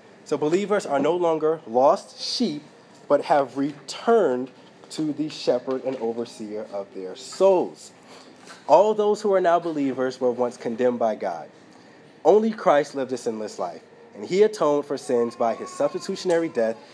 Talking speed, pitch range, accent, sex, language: 155 wpm, 120-155 Hz, American, male, English